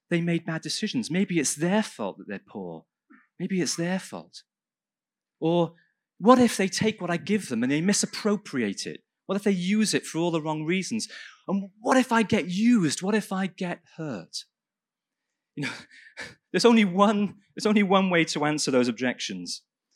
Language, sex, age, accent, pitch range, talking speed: English, male, 30-49, British, 145-205 Hz, 185 wpm